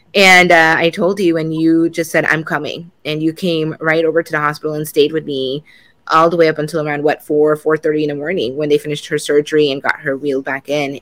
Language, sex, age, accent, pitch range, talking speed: English, female, 20-39, American, 155-185 Hz, 250 wpm